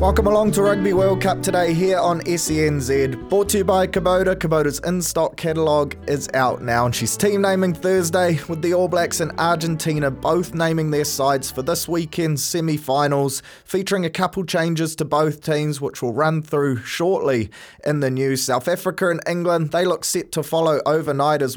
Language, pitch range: English, 140-175 Hz